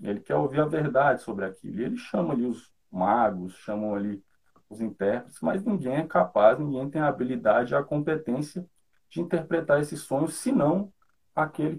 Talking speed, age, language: 175 wpm, 40-59, Portuguese